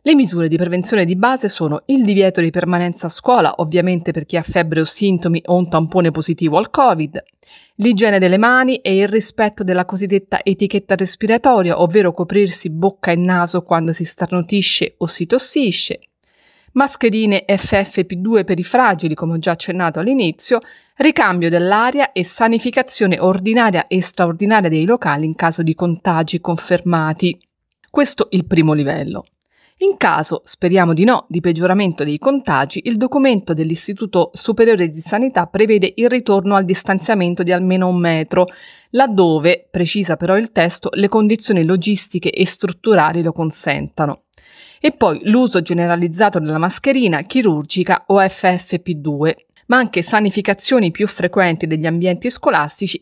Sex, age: female, 30-49